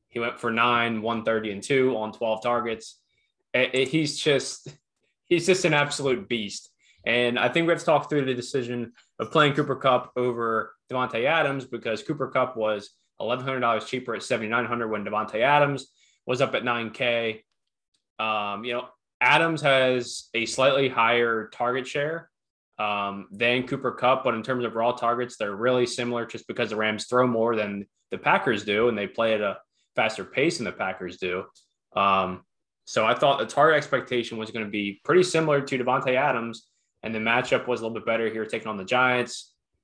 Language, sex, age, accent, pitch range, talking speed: English, male, 20-39, American, 110-130 Hz, 195 wpm